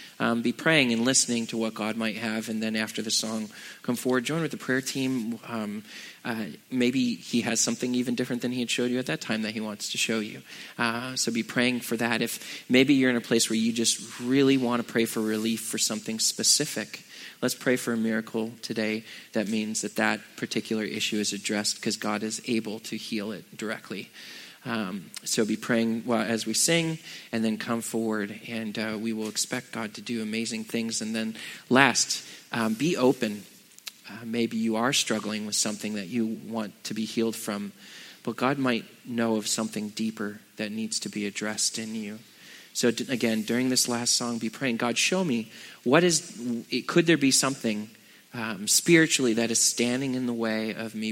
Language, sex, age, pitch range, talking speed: English, male, 20-39, 110-120 Hz, 200 wpm